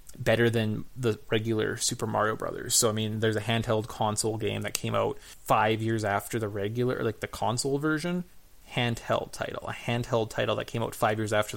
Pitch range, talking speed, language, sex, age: 110-135 Hz, 195 wpm, English, male, 20-39